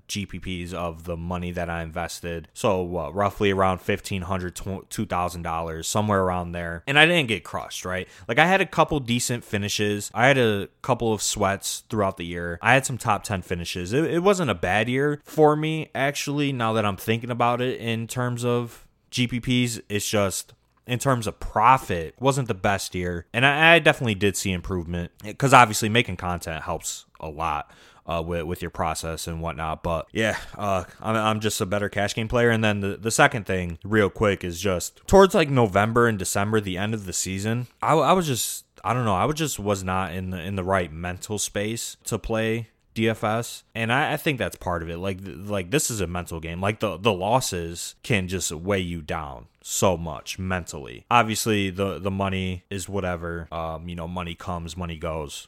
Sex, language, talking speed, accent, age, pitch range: male, English, 205 wpm, American, 20-39, 90-120 Hz